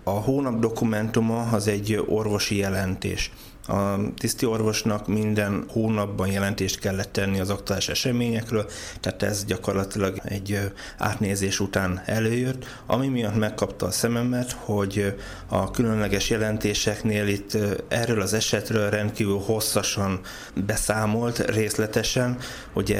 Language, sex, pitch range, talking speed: Hungarian, male, 100-110 Hz, 110 wpm